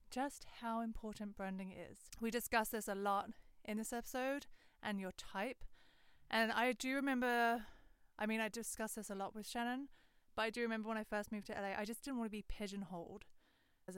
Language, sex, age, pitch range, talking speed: English, female, 20-39, 195-245 Hz, 200 wpm